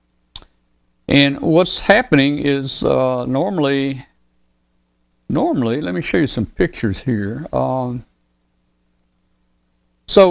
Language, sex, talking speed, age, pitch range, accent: English, male, 95 wpm, 60-79, 100-150 Hz, American